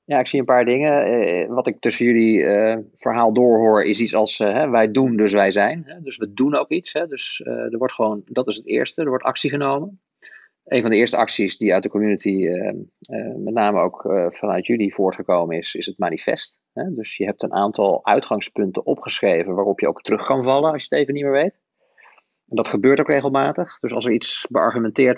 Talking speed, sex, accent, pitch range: 230 wpm, male, Dutch, 105-135 Hz